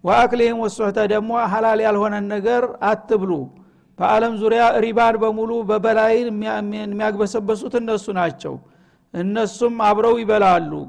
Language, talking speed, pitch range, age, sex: Amharic, 120 wpm, 195-225 Hz, 60-79, male